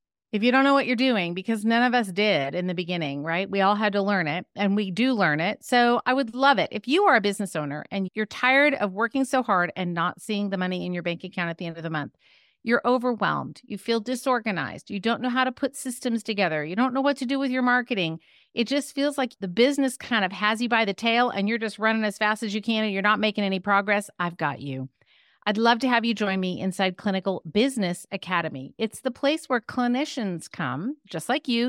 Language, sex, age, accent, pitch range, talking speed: English, female, 40-59, American, 190-255 Hz, 250 wpm